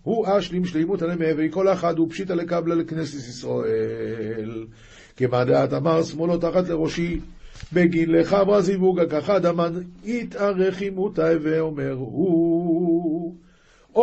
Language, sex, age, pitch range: Hebrew, male, 50-69, 140-180 Hz